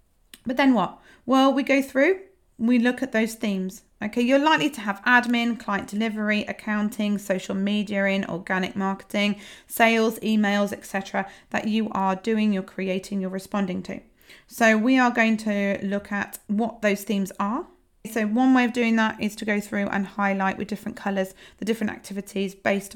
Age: 40-59